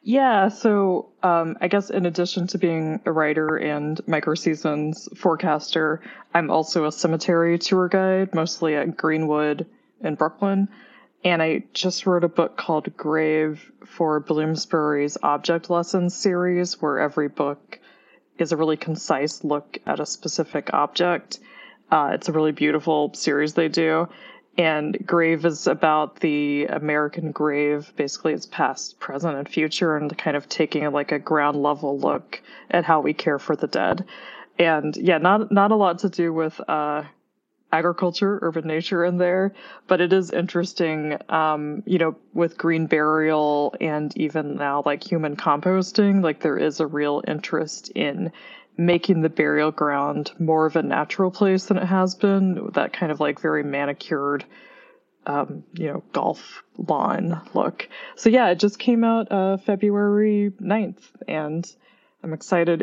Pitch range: 155-185 Hz